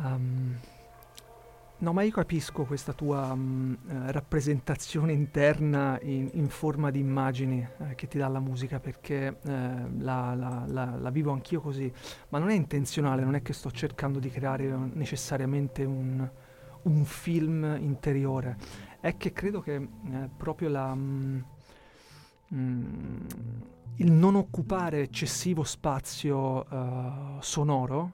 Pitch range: 130-150 Hz